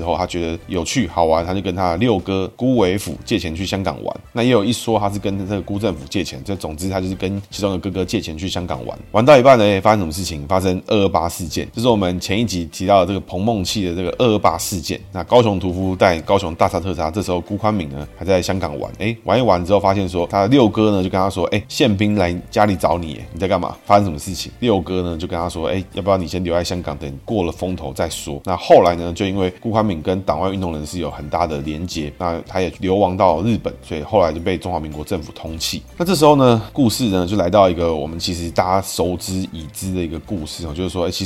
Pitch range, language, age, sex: 85-100 Hz, Chinese, 20-39, male